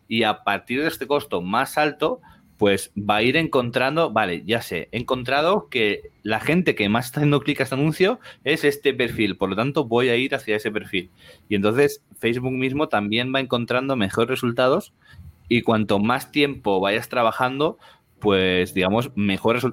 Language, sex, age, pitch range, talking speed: Spanish, male, 30-49, 100-135 Hz, 180 wpm